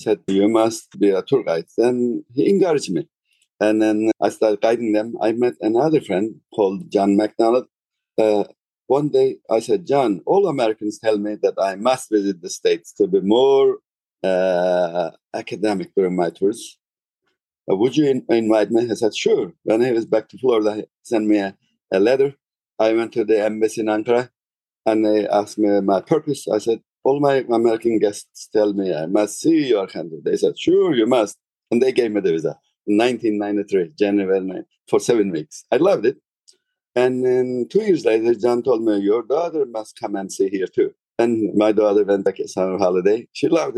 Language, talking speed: English, 195 wpm